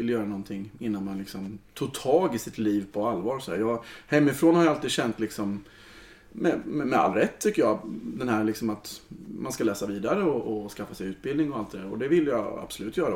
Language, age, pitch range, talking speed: Swedish, 30-49, 110-150 Hz, 225 wpm